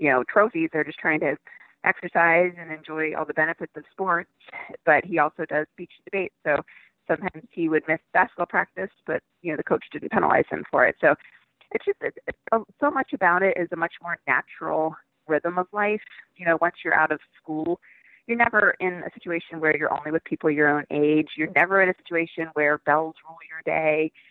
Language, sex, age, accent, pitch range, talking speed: English, female, 30-49, American, 155-195 Hz, 210 wpm